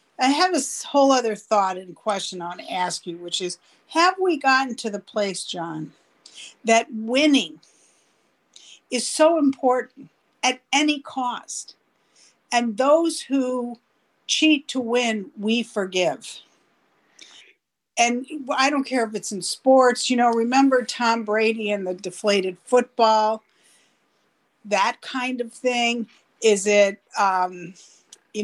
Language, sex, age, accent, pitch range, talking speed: English, female, 50-69, American, 200-255 Hz, 135 wpm